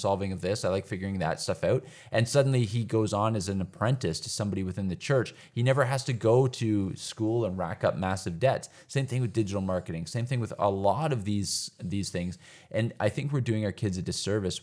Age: 20-39